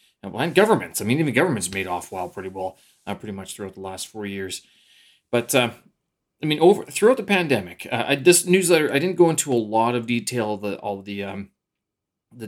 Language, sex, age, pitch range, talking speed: English, male, 30-49, 100-140 Hz, 210 wpm